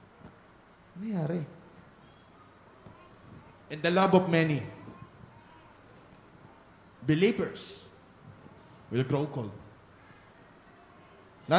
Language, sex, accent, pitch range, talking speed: Filipino, male, native, 150-205 Hz, 65 wpm